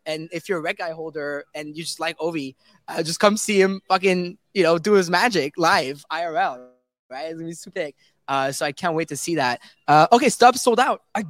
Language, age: English, 20-39